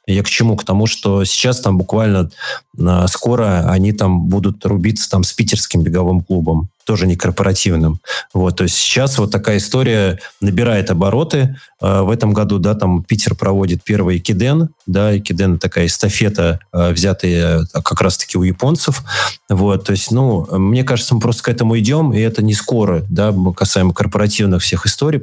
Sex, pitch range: male, 90-110 Hz